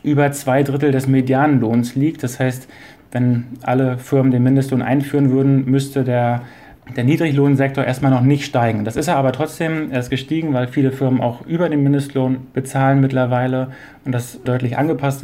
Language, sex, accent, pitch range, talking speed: German, male, German, 125-140 Hz, 170 wpm